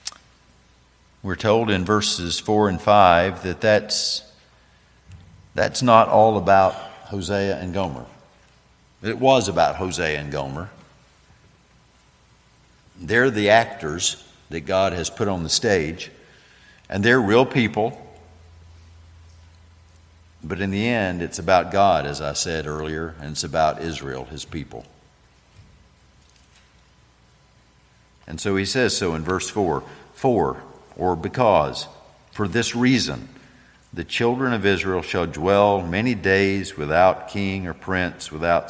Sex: male